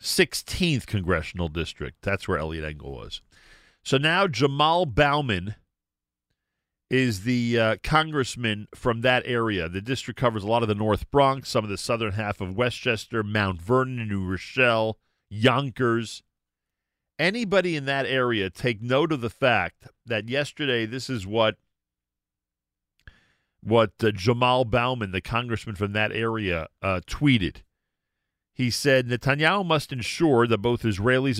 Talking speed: 140 wpm